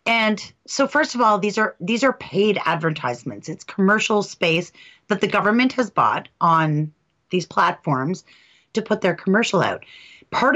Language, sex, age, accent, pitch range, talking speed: English, female, 30-49, American, 165-210 Hz, 160 wpm